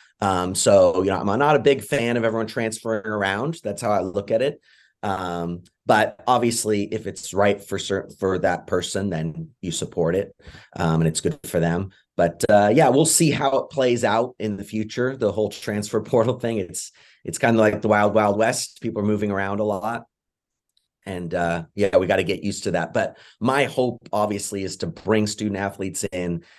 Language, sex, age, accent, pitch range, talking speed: English, male, 30-49, American, 90-110 Hz, 210 wpm